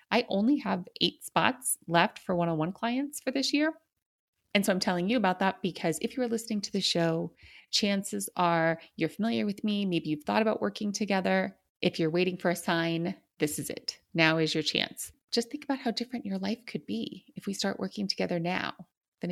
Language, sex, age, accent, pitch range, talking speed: English, female, 30-49, American, 170-220 Hz, 210 wpm